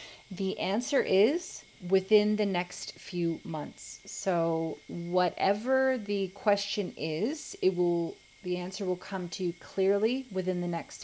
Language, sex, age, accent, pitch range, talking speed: English, female, 30-49, American, 165-190 Hz, 135 wpm